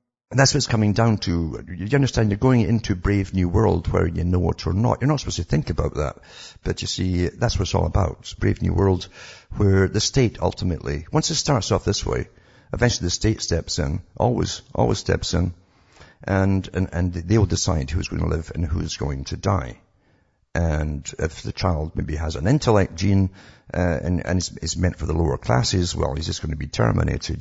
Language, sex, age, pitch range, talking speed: English, male, 60-79, 80-110 Hz, 210 wpm